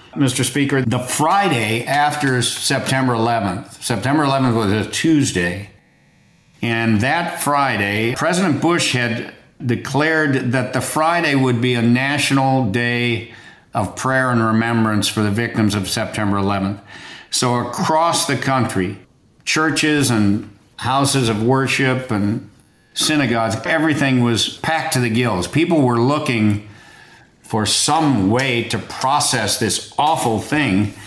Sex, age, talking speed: male, 50-69, 125 wpm